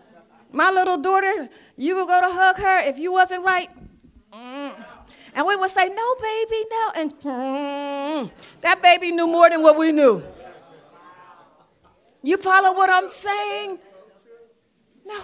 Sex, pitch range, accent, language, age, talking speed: female, 240-335 Hz, American, English, 40-59, 145 wpm